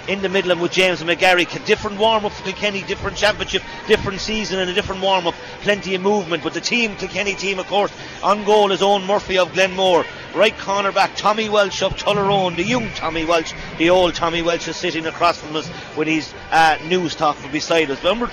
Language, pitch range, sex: English, 170-205 Hz, male